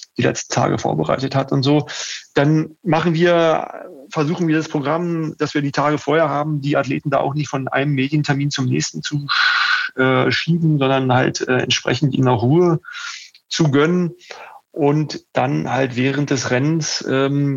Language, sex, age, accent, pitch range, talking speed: German, male, 30-49, German, 130-165 Hz, 160 wpm